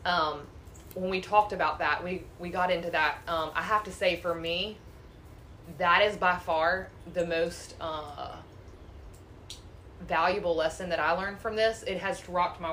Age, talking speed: 20-39, 170 wpm